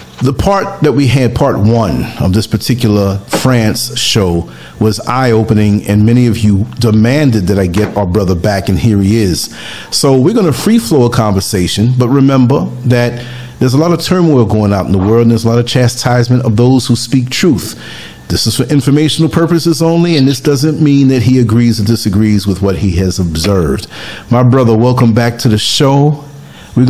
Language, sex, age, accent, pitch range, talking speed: English, male, 40-59, American, 110-135 Hz, 195 wpm